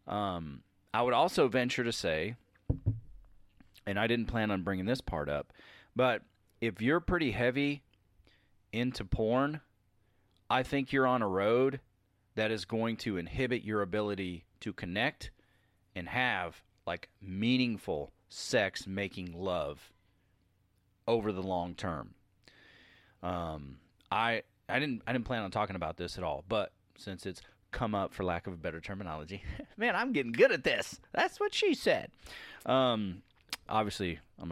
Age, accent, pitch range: 30-49, American, 90-120 Hz